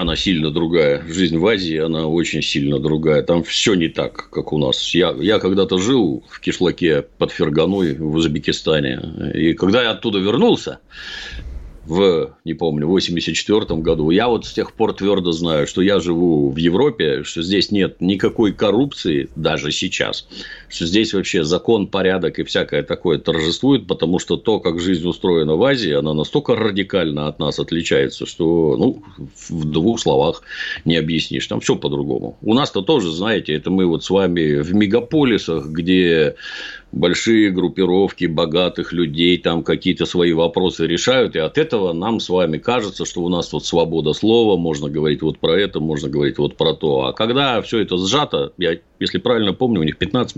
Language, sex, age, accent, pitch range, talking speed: Russian, male, 50-69, native, 75-95 Hz, 175 wpm